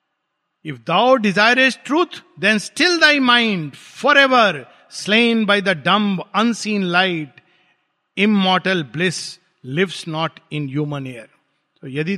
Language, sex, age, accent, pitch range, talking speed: Hindi, male, 50-69, native, 175-245 Hz, 135 wpm